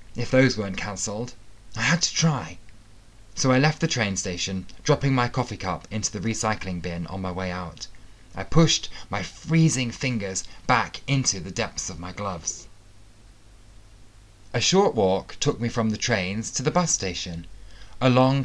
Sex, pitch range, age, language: male, 95-125 Hz, 20-39, English